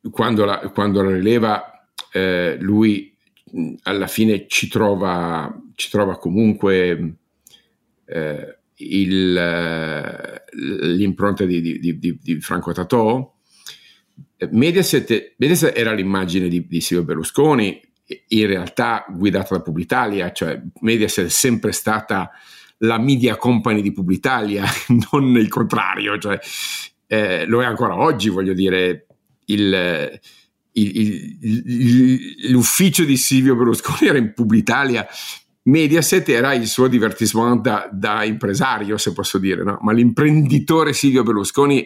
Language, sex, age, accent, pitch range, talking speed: Italian, male, 50-69, native, 95-120 Hz, 120 wpm